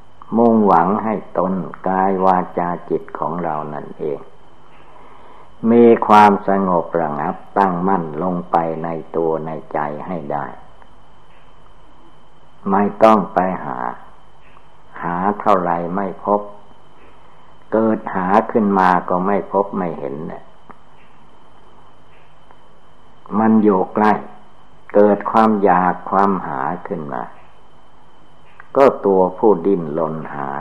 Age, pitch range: 60-79, 85-105 Hz